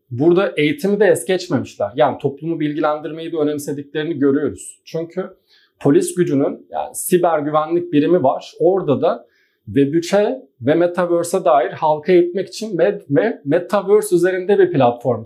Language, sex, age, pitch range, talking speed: Turkish, male, 40-59, 145-185 Hz, 135 wpm